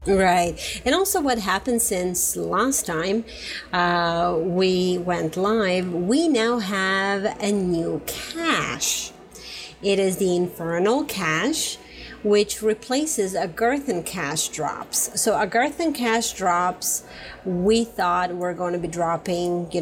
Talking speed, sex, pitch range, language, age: 120 wpm, female, 180-235 Hz, English, 30-49